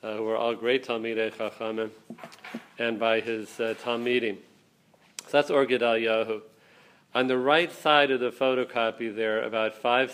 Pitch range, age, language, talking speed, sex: 115-140 Hz, 40-59, English, 155 wpm, male